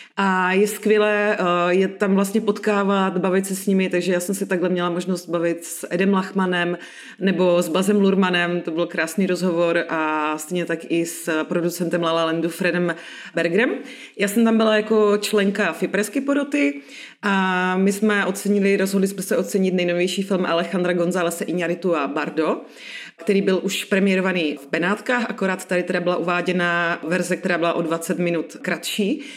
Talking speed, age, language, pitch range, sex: 170 wpm, 30-49, Czech, 170-200 Hz, female